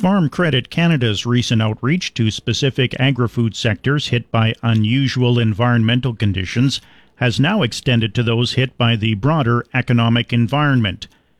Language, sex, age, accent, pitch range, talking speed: English, male, 50-69, American, 110-130 Hz, 130 wpm